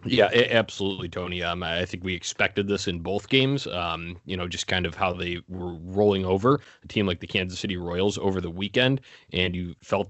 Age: 30-49